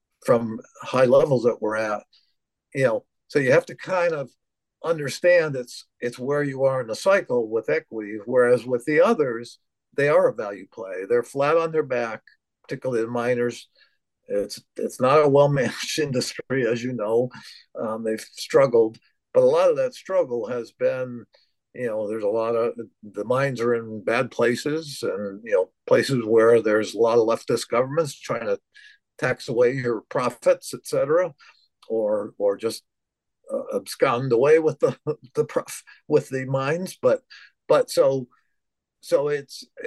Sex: male